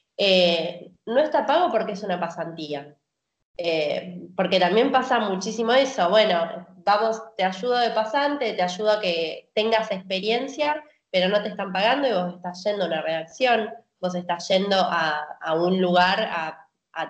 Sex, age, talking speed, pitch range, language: female, 20-39, 160 wpm, 180-260 Hz, Spanish